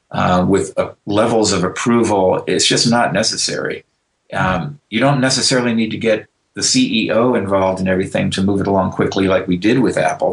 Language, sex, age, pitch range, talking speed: English, male, 40-59, 90-110 Hz, 185 wpm